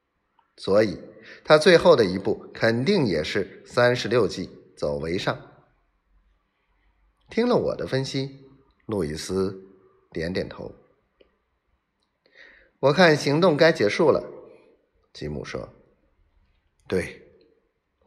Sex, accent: male, native